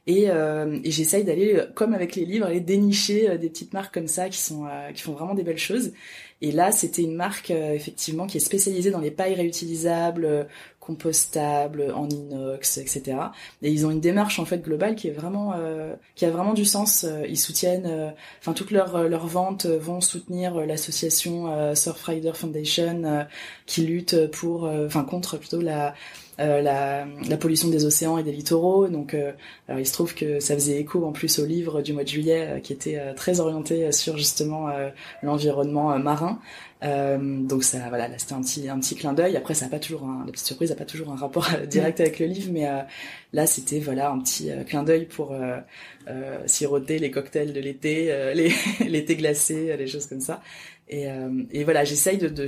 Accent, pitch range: French, 145-170 Hz